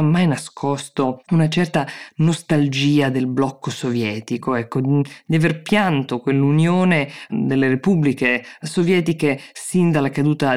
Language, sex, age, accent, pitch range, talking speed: Italian, female, 20-39, native, 135-170 Hz, 110 wpm